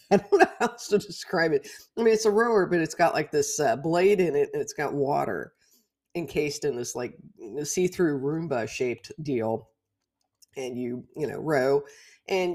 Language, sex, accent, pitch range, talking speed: English, female, American, 135-200 Hz, 185 wpm